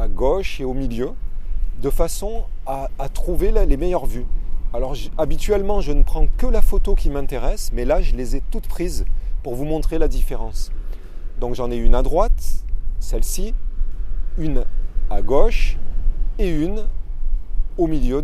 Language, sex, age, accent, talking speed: French, male, 30-49, French, 160 wpm